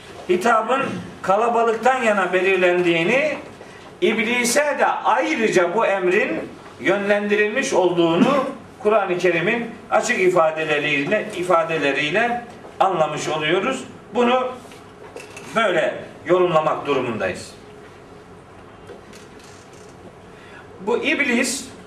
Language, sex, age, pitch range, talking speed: Turkish, male, 50-69, 185-250 Hz, 65 wpm